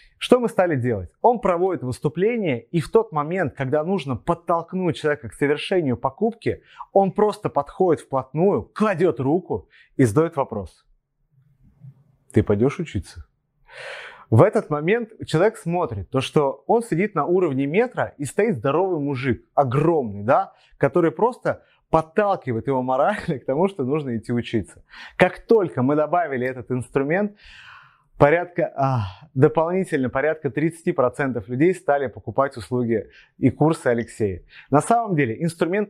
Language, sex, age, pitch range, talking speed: Russian, male, 30-49, 130-185 Hz, 130 wpm